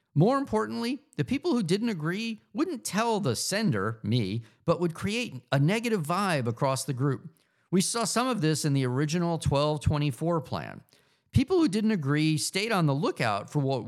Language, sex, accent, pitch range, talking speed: English, male, American, 120-175 Hz, 175 wpm